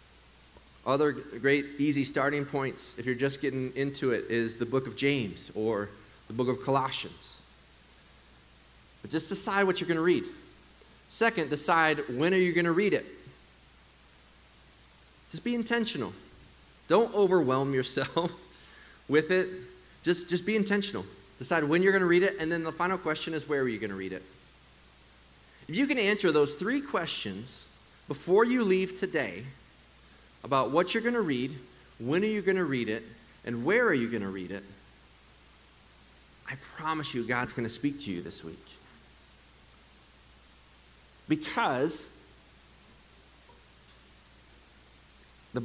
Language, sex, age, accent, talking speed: English, male, 30-49, American, 150 wpm